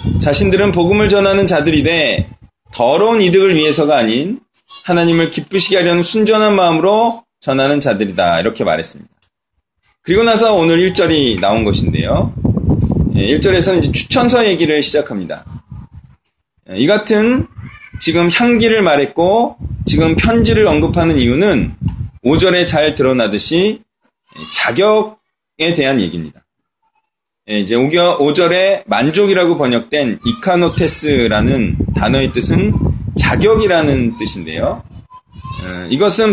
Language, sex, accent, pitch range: Korean, male, native, 150-215 Hz